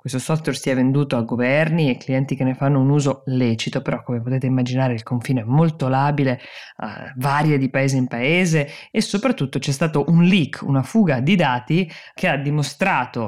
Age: 20-39